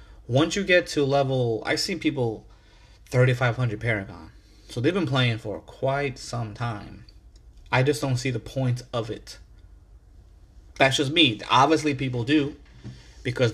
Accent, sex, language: American, male, English